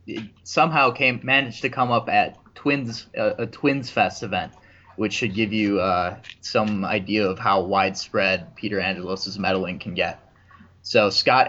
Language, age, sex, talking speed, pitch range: English, 20-39, male, 160 wpm, 95-120 Hz